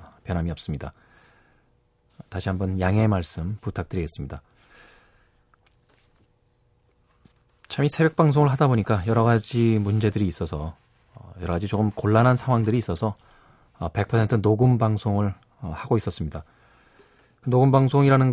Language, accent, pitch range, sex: Korean, native, 95-120 Hz, male